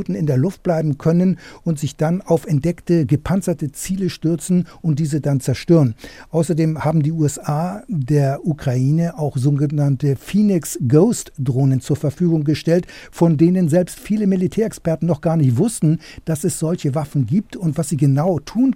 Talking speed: 155 wpm